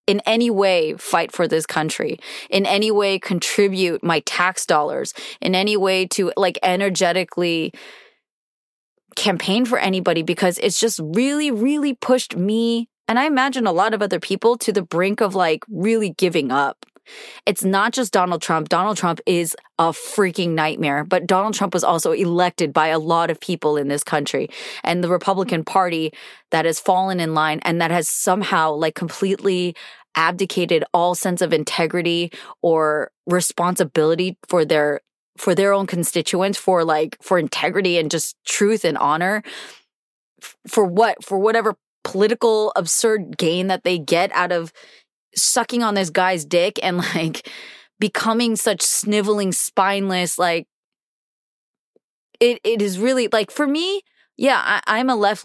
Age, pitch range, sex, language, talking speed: 20-39, 170-205 Hz, female, English, 155 wpm